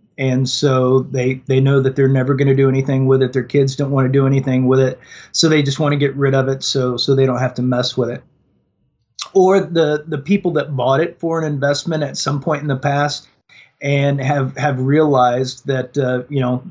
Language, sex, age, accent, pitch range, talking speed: English, male, 30-49, American, 130-155 Hz, 235 wpm